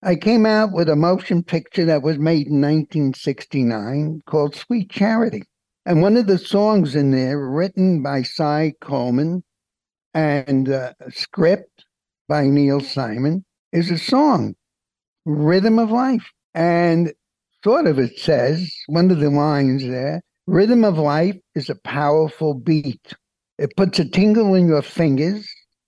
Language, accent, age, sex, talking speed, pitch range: English, American, 60-79, male, 145 wpm, 140-185 Hz